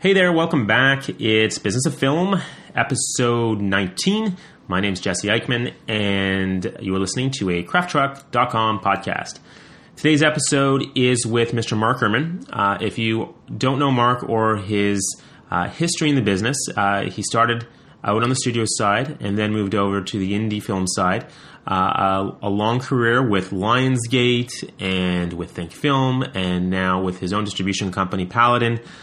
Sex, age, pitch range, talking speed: male, 30-49, 95-125 Hz, 155 wpm